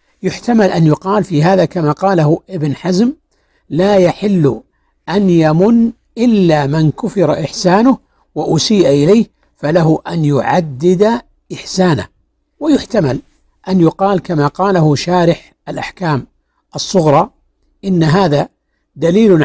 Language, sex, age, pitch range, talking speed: Arabic, male, 60-79, 150-205 Hz, 105 wpm